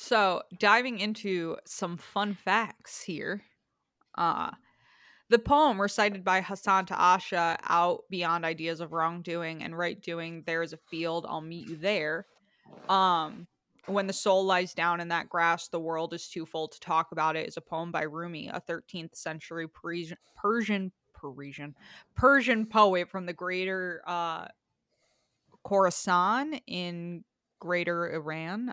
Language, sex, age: English, female, 20-39